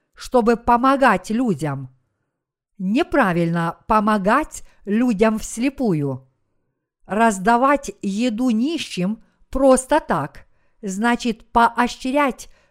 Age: 50-69